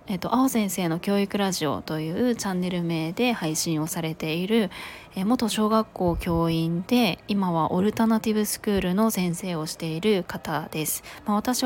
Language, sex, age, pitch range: Japanese, female, 20-39, 165-220 Hz